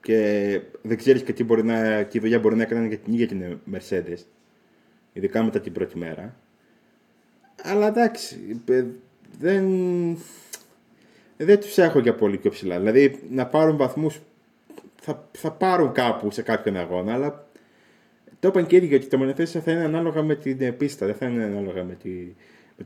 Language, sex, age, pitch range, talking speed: Greek, male, 30-49, 110-155 Hz, 160 wpm